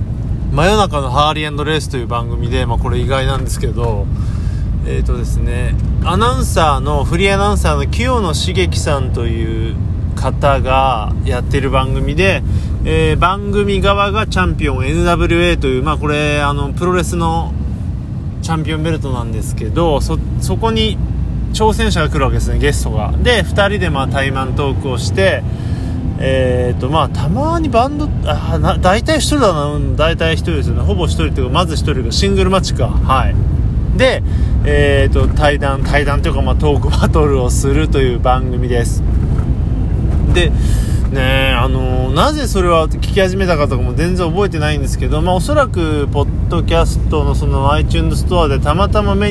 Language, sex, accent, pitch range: Japanese, male, native, 85-120 Hz